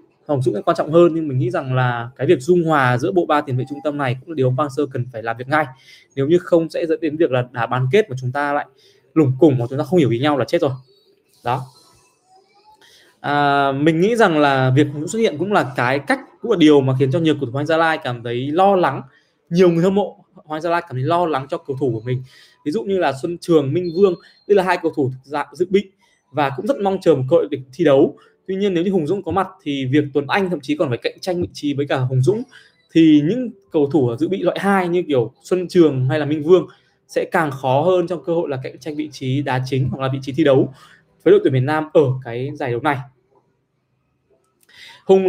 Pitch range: 140-185 Hz